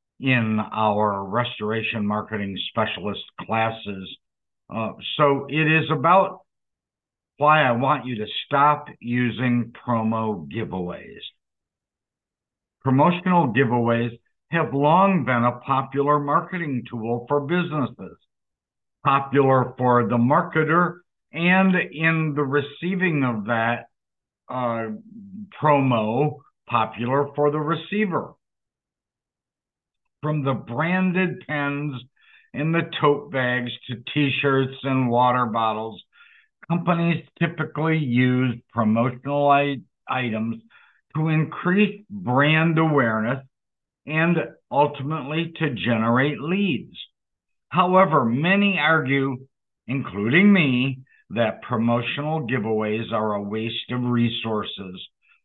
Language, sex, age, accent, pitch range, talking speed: English, male, 60-79, American, 120-160 Hz, 95 wpm